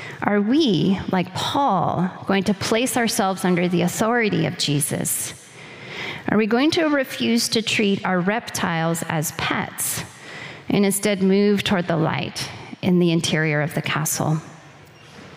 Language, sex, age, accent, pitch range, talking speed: English, female, 30-49, American, 160-210 Hz, 140 wpm